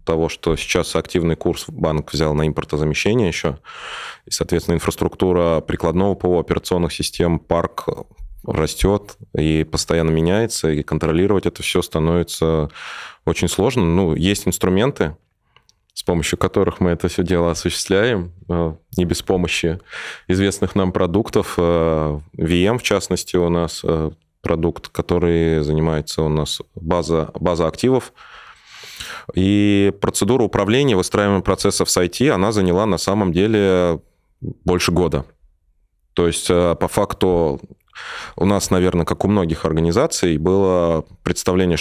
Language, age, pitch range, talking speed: Russian, 20-39, 80-95 Hz, 125 wpm